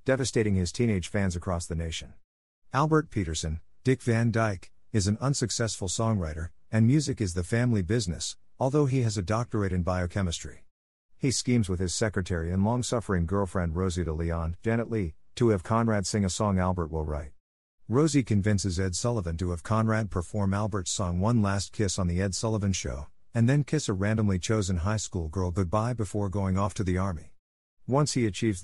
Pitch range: 90-115 Hz